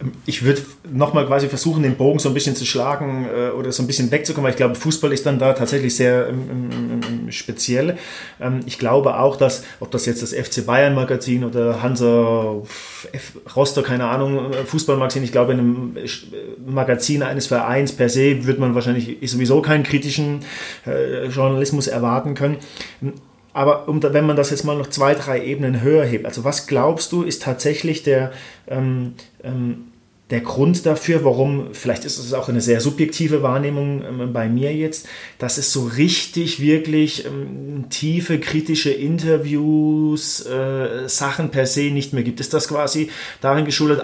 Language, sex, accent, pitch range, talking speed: German, male, German, 130-150 Hz, 160 wpm